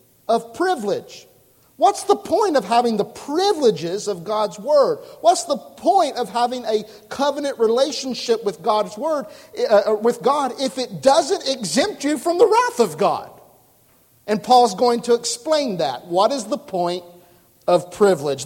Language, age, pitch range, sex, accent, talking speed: English, 50-69, 170-250 Hz, male, American, 155 wpm